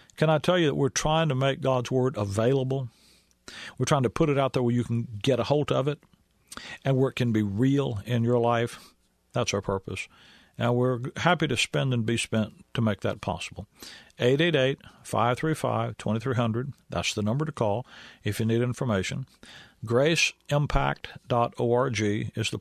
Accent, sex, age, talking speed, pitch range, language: American, male, 50-69, 170 wpm, 110-140 Hz, English